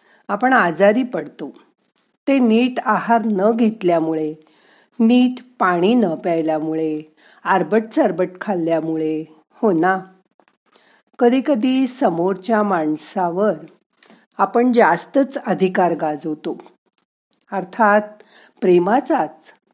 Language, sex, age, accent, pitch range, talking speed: Marathi, female, 50-69, native, 180-245 Hz, 80 wpm